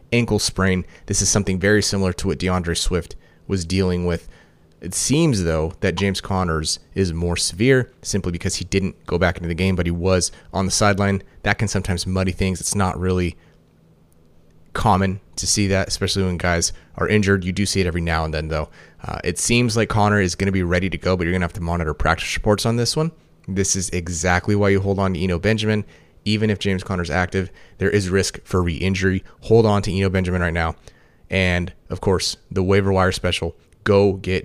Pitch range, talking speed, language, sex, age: 85-100 Hz, 215 wpm, English, male, 30-49